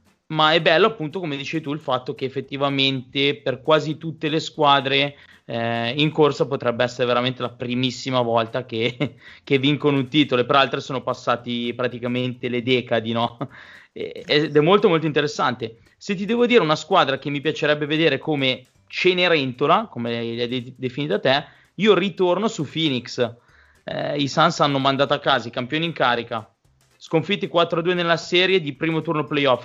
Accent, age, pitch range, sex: native, 30-49, 125-160 Hz, male